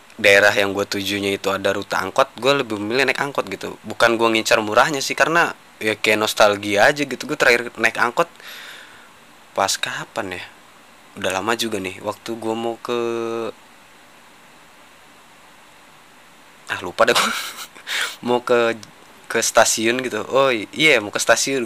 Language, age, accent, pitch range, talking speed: Indonesian, 20-39, native, 105-125 Hz, 150 wpm